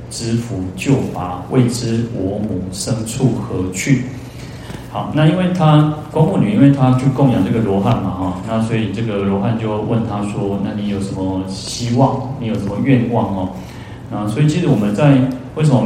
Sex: male